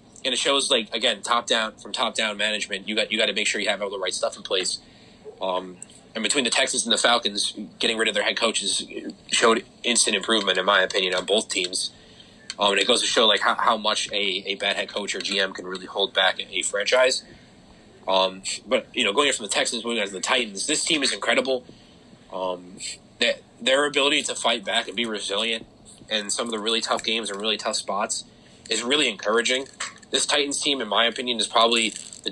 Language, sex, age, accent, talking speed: English, male, 20-39, American, 225 wpm